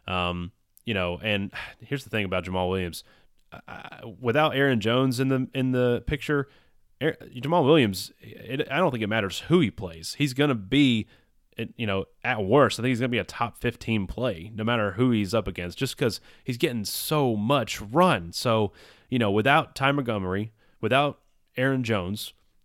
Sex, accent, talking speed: male, American, 190 wpm